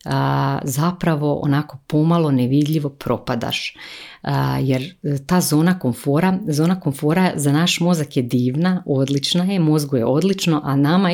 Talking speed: 135 wpm